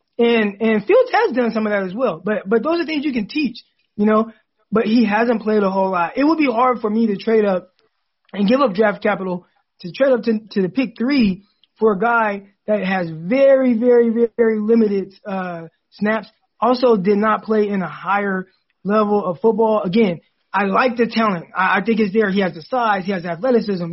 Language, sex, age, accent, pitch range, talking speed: English, male, 20-39, American, 195-235 Hz, 220 wpm